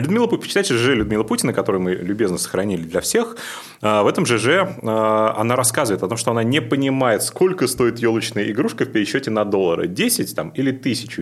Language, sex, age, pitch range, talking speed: Russian, male, 30-49, 105-135 Hz, 170 wpm